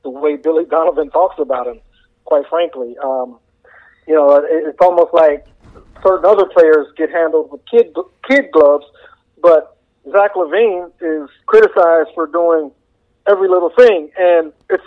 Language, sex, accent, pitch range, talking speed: English, male, American, 155-195 Hz, 145 wpm